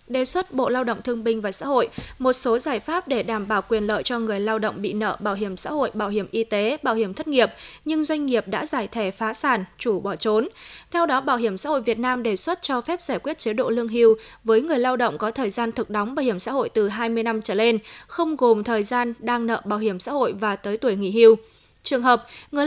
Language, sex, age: Vietnamese, female, 20-39